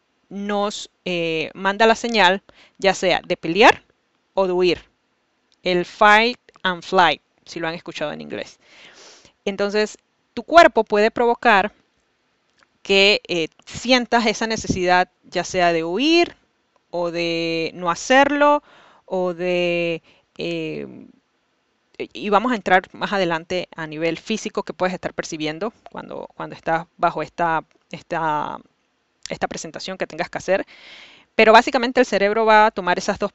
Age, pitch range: 20-39, 175-225 Hz